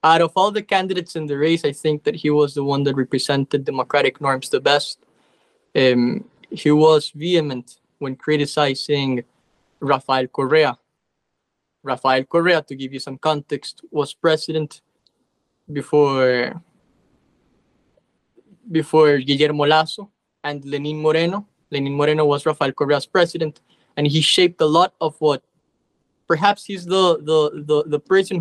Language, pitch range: English, 140-165 Hz